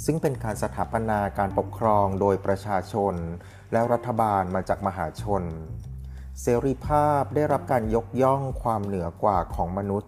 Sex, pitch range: male, 95-120 Hz